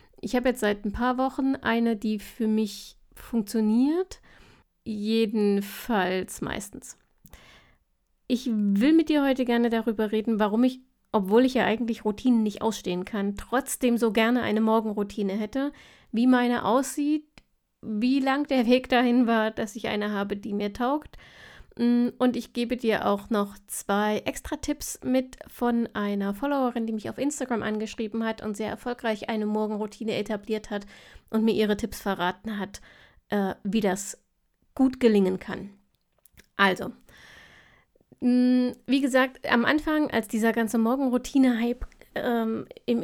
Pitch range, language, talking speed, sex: 215-250 Hz, German, 140 wpm, female